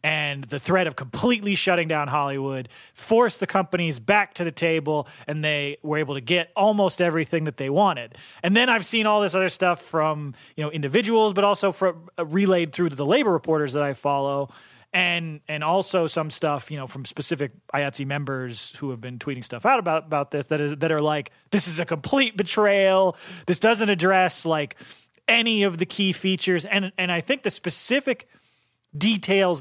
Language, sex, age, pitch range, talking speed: English, male, 30-49, 145-190 Hz, 195 wpm